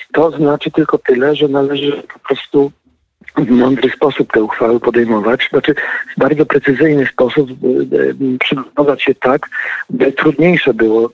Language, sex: Polish, male